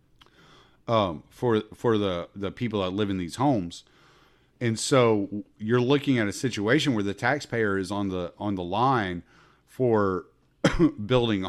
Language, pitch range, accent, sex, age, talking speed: English, 100-125 Hz, American, male, 40-59, 150 wpm